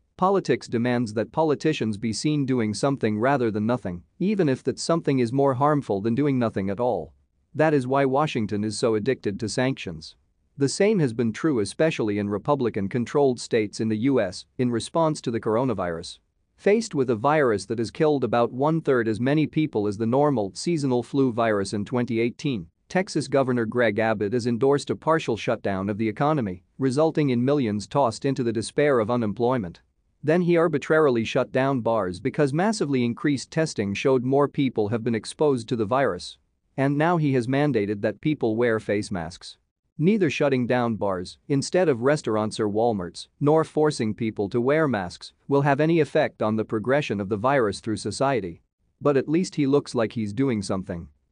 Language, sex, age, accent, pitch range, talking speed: English, male, 40-59, American, 105-145 Hz, 180 wpm